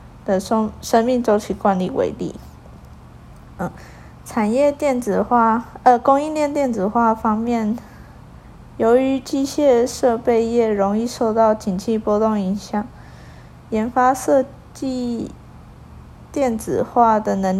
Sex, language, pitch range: female, Chinese, 205-245 Hz